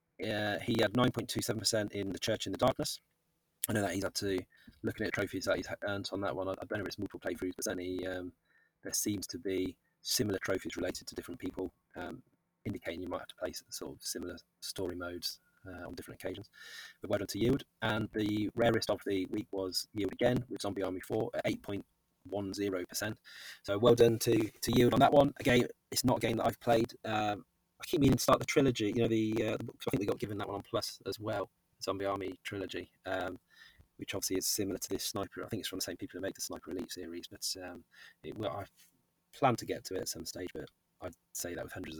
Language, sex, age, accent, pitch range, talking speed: English, male, 30-49, British, 95-120 Hz, 225 wpm